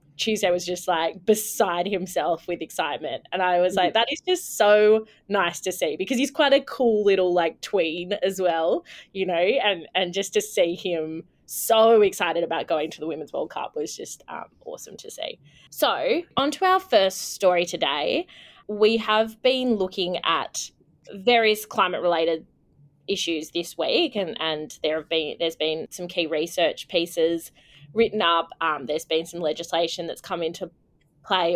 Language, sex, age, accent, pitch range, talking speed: English, female, 20-39, Australian, 165-215 Hz, 175 wpm